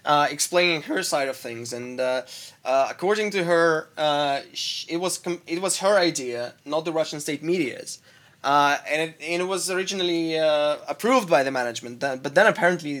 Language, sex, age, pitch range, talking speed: English, male, 20-39, 145-175 Hz, 195 wpm